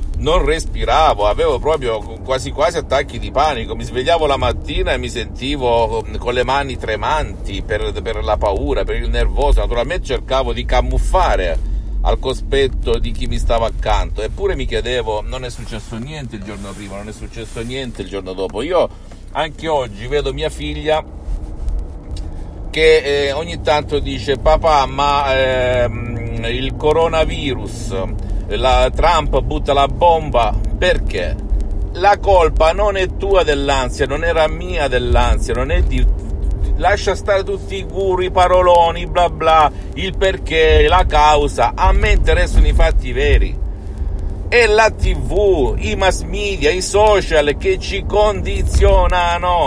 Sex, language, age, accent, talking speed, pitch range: male, Italian, 50-69, native, 145 wpm, 105-170 Hz